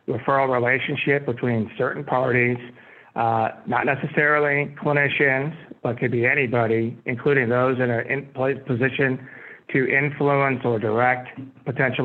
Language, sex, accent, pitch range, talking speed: English, male, American, 120-140 Hz, 115 wpm